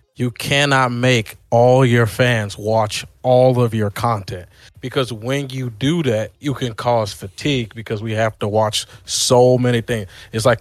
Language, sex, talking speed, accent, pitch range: English, male, 170 wpm, American, 110-130 Hz